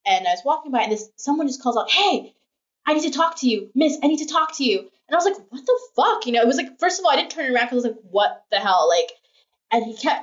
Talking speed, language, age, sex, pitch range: 325 wpm, English, 20-39, female, 215-335 Hz